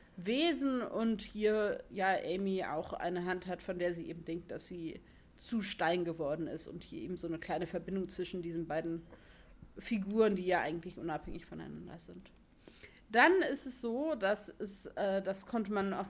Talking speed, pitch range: 180 wpm, 180-220 Hz